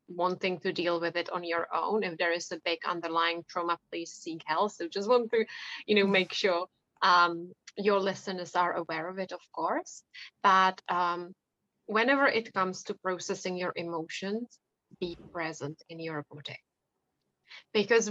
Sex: female